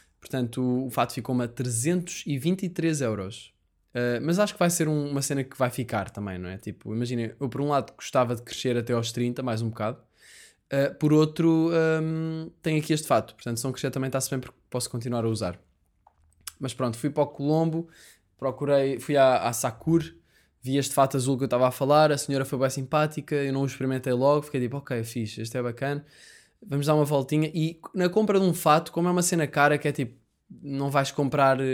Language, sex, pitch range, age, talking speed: Portuguese, male, 120-150 Hz, 20-39, 220 wpm